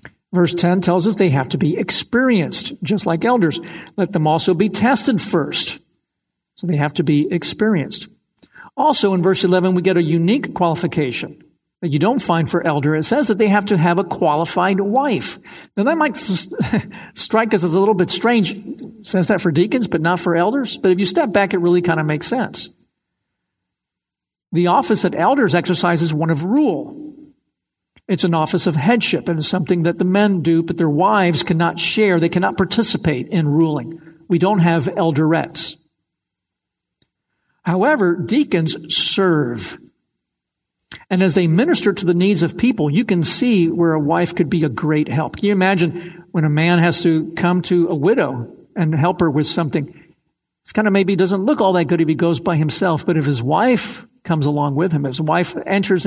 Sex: male